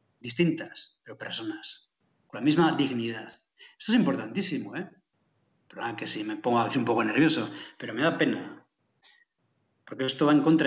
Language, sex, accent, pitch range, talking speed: Spanish, male, Spanish, 135-170 Hz, 170 wpm